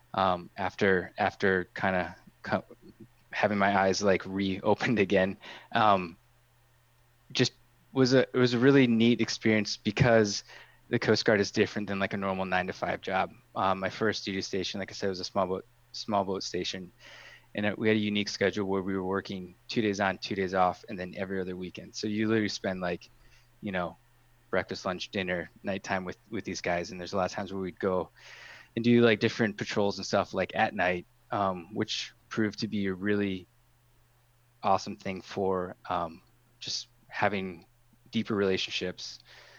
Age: 20-39